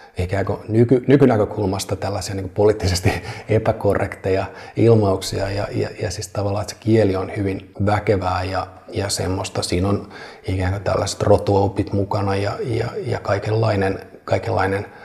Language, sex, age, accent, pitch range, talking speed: Finnish, male, 30-49, native, 95-110 Hz, 130 wpm